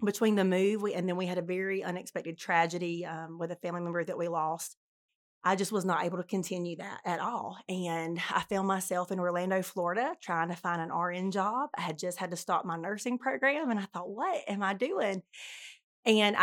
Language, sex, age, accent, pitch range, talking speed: English, female, 30-49, American, 175-195 Hz, 215 wpm